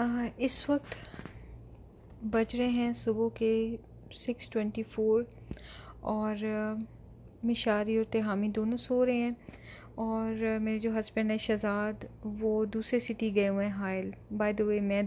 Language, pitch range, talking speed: Urdu, 205-230 Hz, 150 wpm